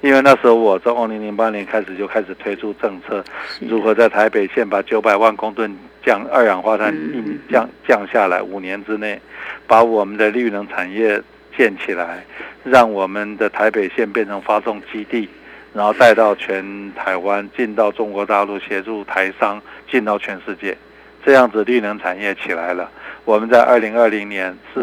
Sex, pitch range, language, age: male, 100-125 Hz, Chinese, 60-79